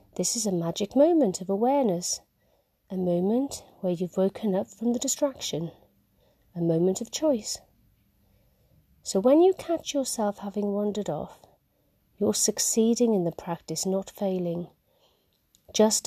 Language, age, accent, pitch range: English, 40-59, British, 160-220 Hz